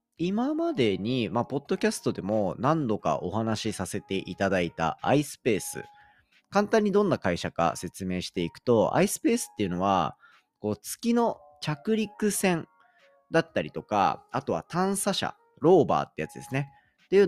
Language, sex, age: Japanese, male, 40-59